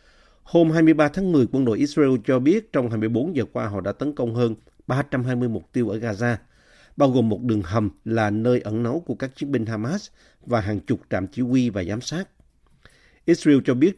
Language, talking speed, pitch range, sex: Vietnamese, 210 wpm, 110-140 Hz, male